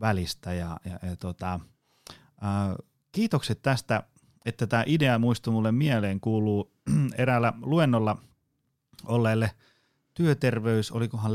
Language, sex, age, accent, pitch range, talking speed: Finnish, male, 30-49, native, 105-130 Hz, 110 wpm